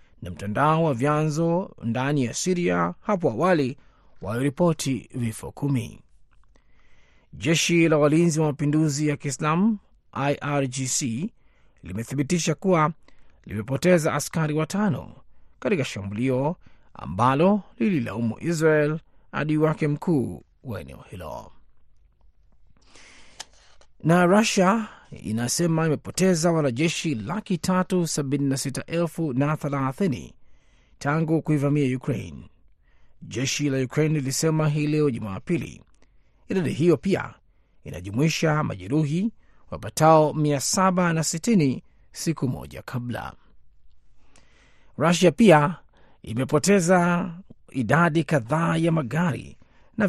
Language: Swahili